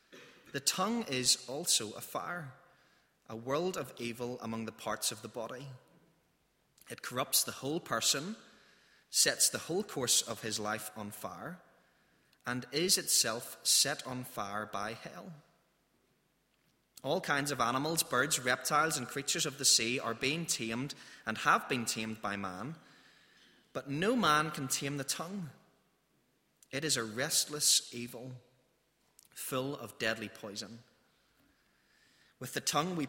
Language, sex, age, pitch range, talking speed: English, male, 20-39, 120-160 Hz, 140 wpm